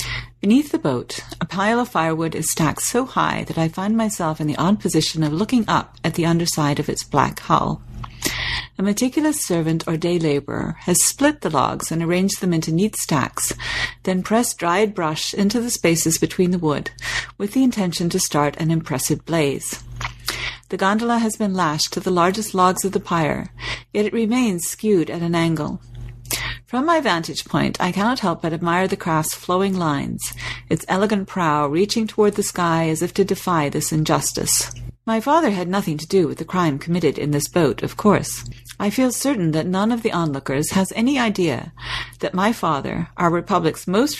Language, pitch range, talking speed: English, 155-205 Hz, 190 wpm